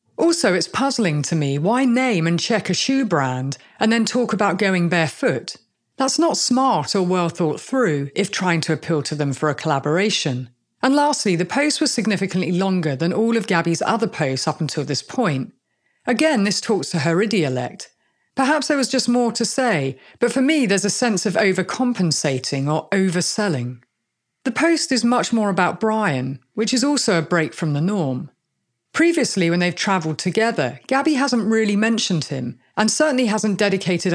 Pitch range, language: 165-245 Hz, English